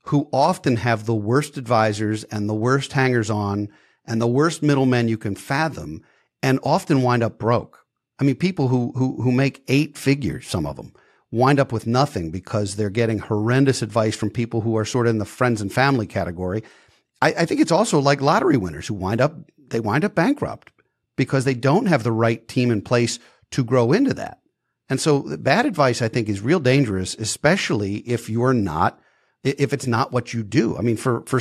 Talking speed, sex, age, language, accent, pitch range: 205 wpm, male, 50-69, English, American, 115-145 Hz